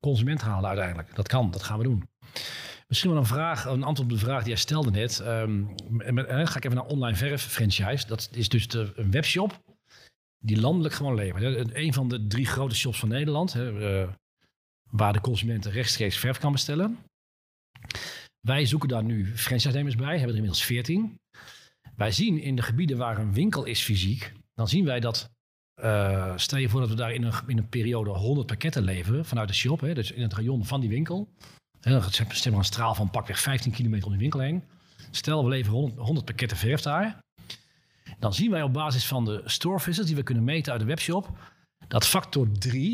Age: 40-59